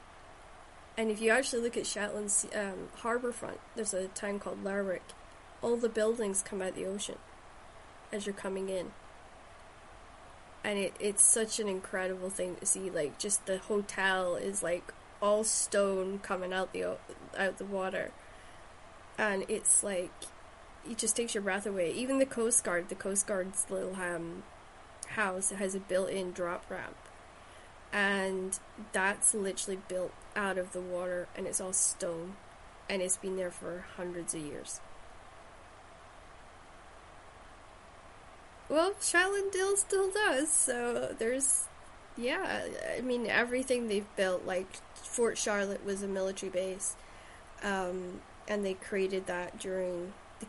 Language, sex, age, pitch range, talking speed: English, female, 10-29, 185-220 Hz, 145 wpm